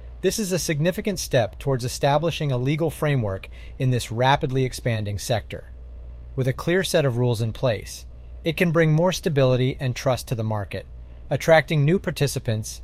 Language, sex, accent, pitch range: English, male, American, 95-145 Hz